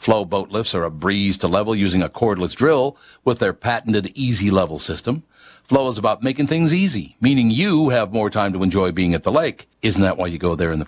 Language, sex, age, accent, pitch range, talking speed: English, male, 60-79, American, 100-140 Hz, 230 wpm